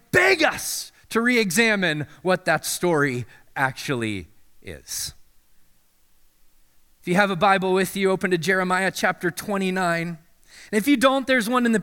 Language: English